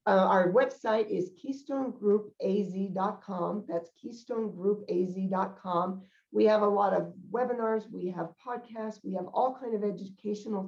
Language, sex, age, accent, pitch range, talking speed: English, female, 50-69, American, 180-220 Hz, 125 wpm